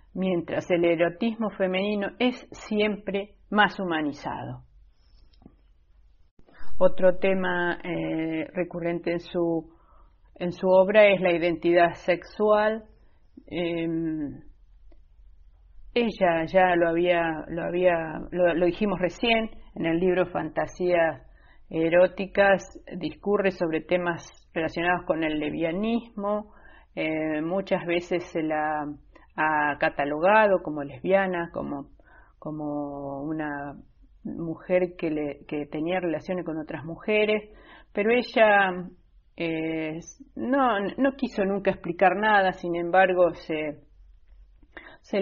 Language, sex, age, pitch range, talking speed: Spanish, female, 40-59, 160-195 Hz, 105 wpm